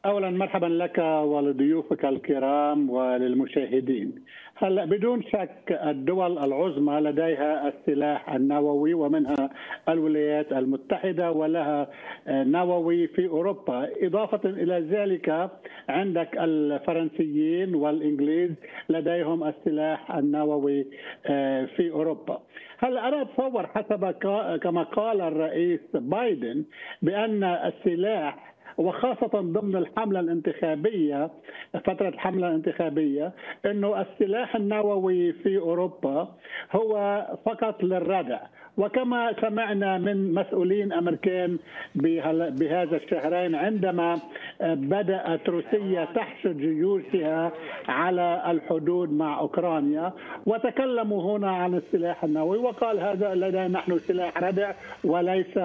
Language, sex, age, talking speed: Arabic, male, 60-79, 90 wpm